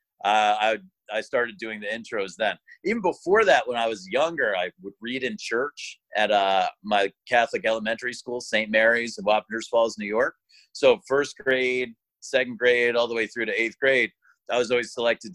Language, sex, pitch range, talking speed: English, male, 110-130 Hz, 190 wpm